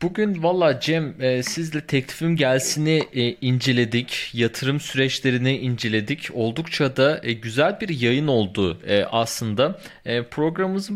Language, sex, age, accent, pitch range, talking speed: Turkish, male, 30-49, native, 110-160 Hz, 100 wpm